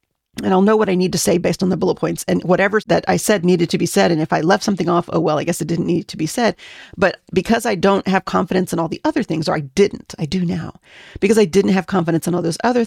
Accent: American